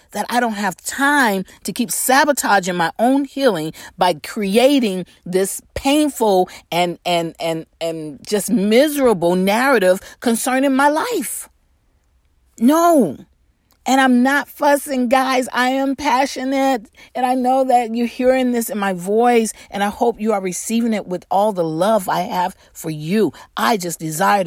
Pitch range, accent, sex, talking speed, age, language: 185-255 Hz, American, female, 150 wpm, 40-59, English